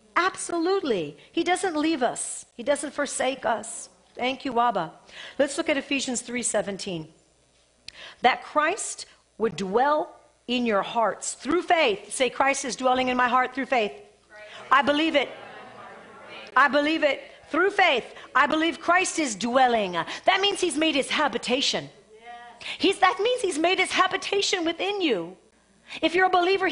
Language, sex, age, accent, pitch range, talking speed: English, female, 50-69, American, 255-340 Hz, 155 wpm